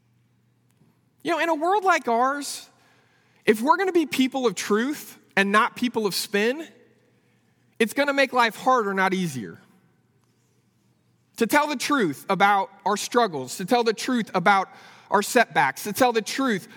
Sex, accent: male, American